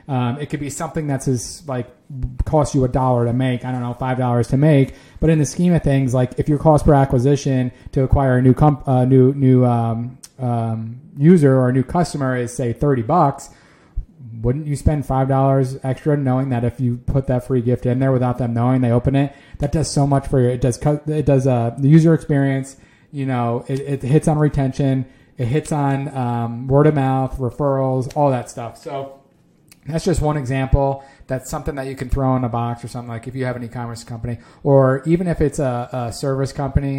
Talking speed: 225 wpm